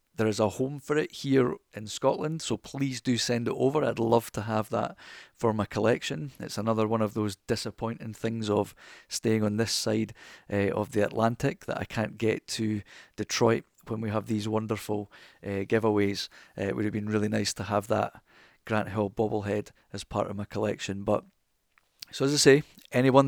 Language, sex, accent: English, male, British